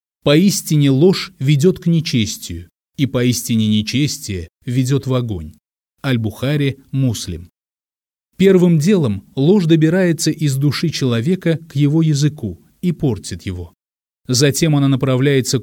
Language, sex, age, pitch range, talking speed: Russian, male, 30-49, 115-150 Hz, 110 wpm